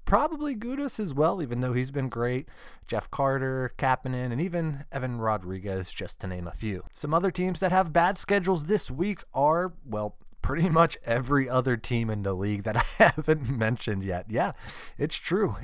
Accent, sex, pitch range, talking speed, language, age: American, male, 110-155 Hz, 185 wpm, English, 20-39